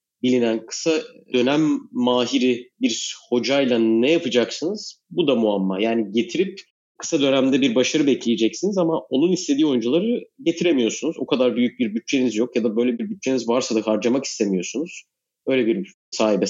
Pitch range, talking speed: 120-170 Hz, 150 wpm